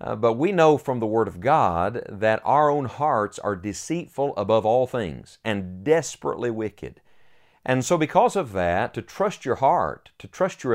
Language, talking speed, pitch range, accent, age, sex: English, 185 wpm, 105-140 Hz, American, 50-69, male